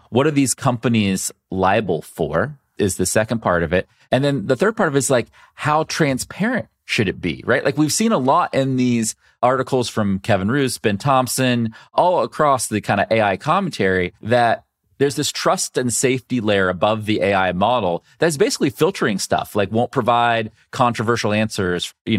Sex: male